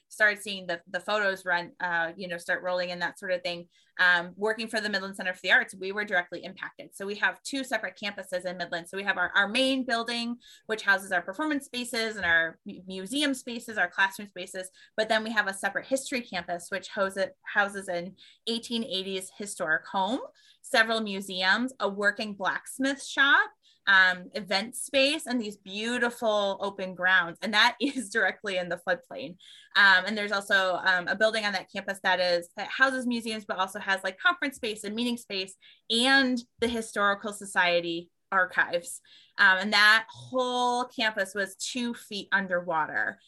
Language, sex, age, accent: English, female, 20-39, American